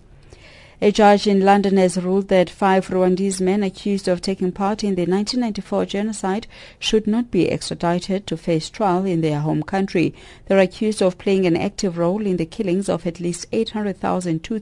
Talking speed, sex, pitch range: 180 wpm, female, 155-195 Hz